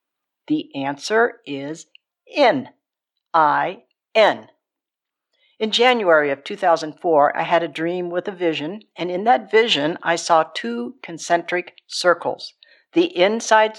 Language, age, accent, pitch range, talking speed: English, 60-79, American, 170-235 Hz, 115 wpm